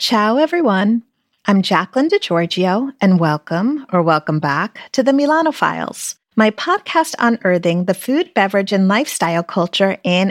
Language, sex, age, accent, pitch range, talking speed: English, female, 30-49, American, 170-265 Hz, 135 wpm